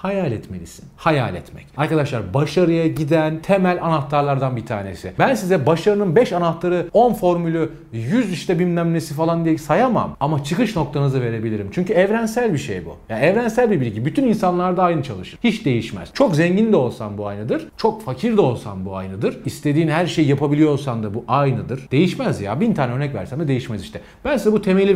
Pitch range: 115-185 Hz